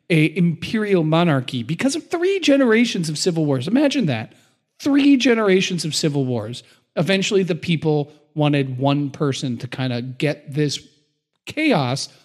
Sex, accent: male, American